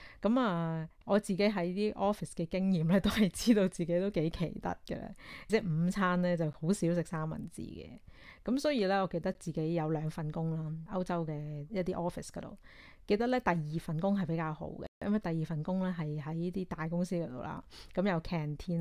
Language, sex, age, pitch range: Chinese, female, 30-49, 155-185 Hz